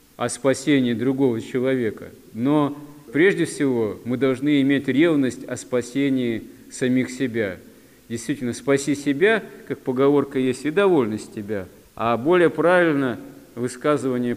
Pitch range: 115-140 Hz